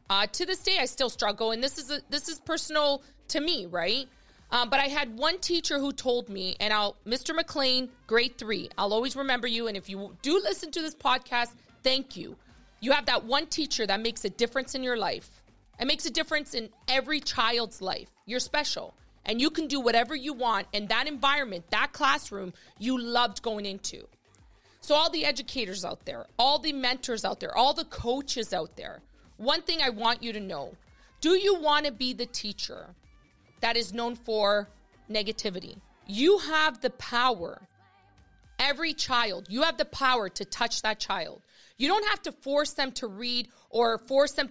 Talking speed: 195 wpm